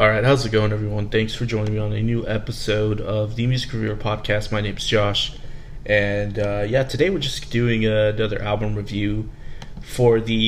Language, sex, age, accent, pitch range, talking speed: English, male, 20-39, American, 105-125 Hz, 190 wpm